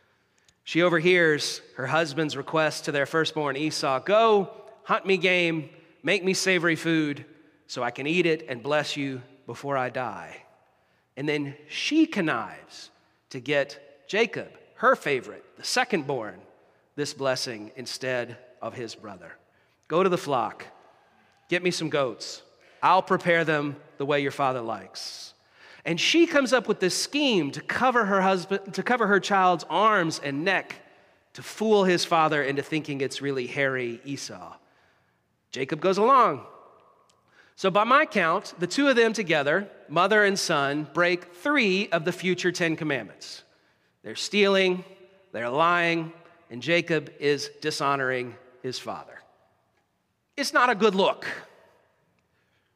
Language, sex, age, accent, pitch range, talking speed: English, male, 40-59, American, 140-195 Hz, 145 wpm